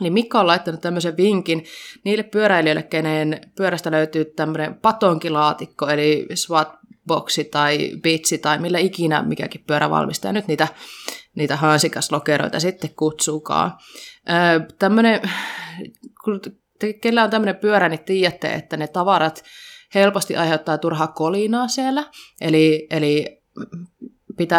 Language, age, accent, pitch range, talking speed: Finnish, 20-39, native, 155-205 Hz, 110 wpm